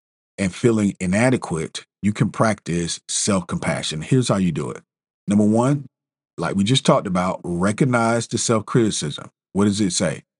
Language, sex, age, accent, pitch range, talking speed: English, male, 40-59, American, 100-165 Hz, 150 wpm